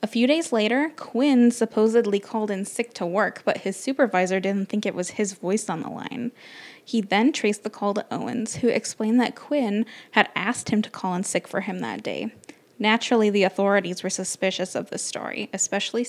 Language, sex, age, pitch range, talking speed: English, female, 10-29, 195-235 Hz, 200 wpm